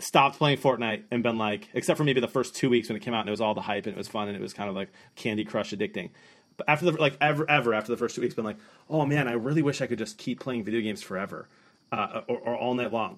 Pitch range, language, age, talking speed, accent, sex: 115-135 Hz, English, 30-49, 310 wpm, American, male